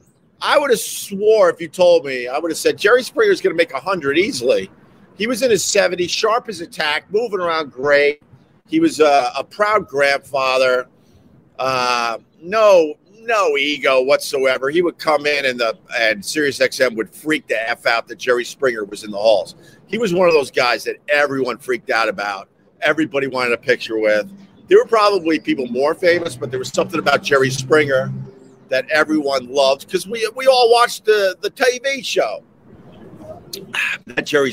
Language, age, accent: English, 50-69, American